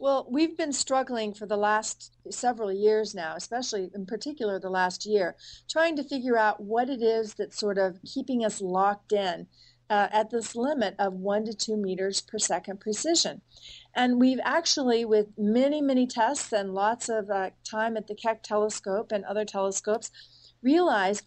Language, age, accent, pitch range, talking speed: English, 40-59, American, 195-250 Hz, 175 wpm